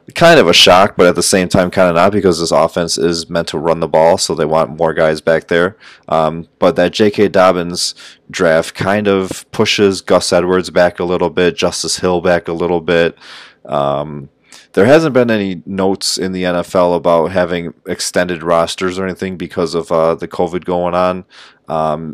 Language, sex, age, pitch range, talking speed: English, male, 30-49, 85-95 Hz, 195 wpm